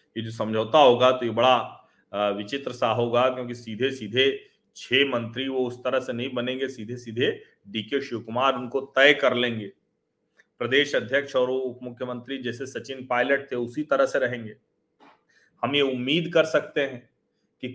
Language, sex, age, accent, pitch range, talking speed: Hindi, male, 40-59, native, 125-180 Hz, 165 wpm